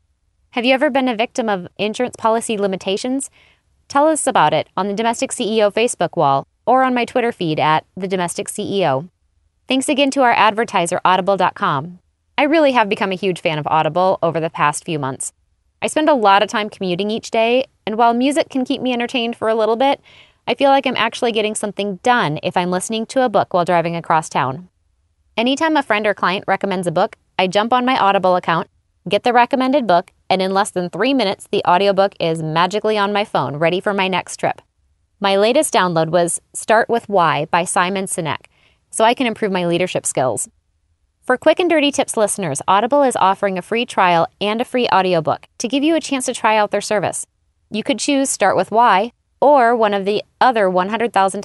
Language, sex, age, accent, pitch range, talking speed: English, female, 20-39, American, 175-240 Hz, 205 wpm